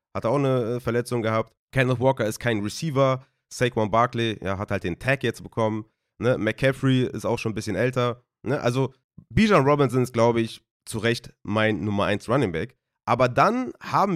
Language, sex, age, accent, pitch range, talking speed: German, male, 30-49, German, 110-150 Hz, 185 wpm